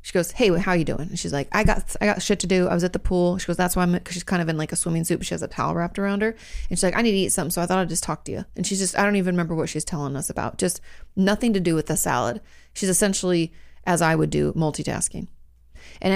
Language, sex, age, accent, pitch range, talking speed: English, female, 30-49, American, 155-210 Hz, 325 wpm